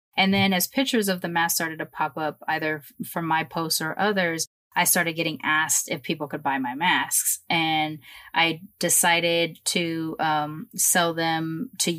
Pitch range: 155-185 Hz